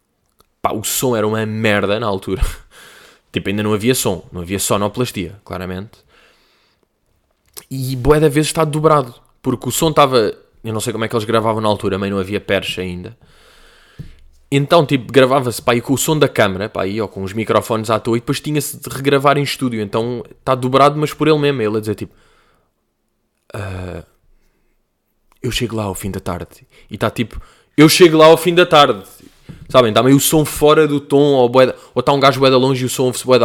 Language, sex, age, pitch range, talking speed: Portuguese, male, 20-39, 105-130 Hz, 205 wpm